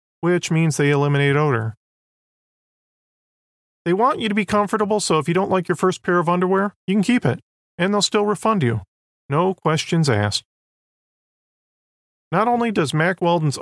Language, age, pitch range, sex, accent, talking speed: English, 40-59, 140-185 Hz, male, American, 170 wpm